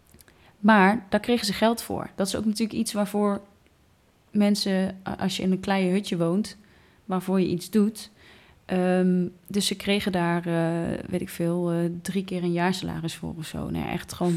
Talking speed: 185 wpm